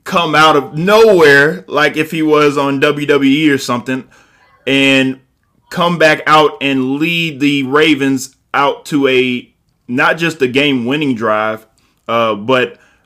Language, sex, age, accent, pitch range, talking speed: English, male, 20-39, American, 135-165 Hz, 140 wpm